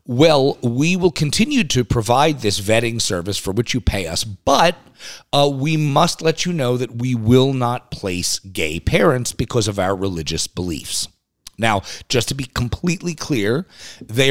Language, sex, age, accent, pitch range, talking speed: English, male, 40-59, American, 95-135 Hz, 170 wpm